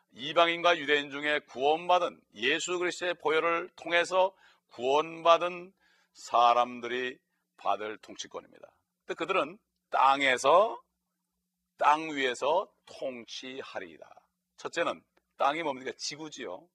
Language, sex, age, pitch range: Korean, male, 40-59, 125-180 Hz